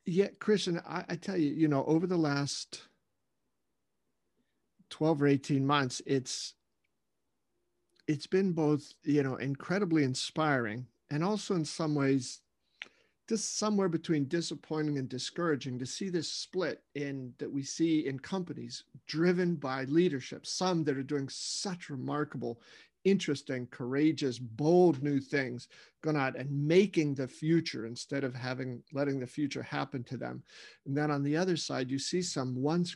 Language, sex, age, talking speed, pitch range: English, male, 50-69, 150 wpm, 140-175 Hz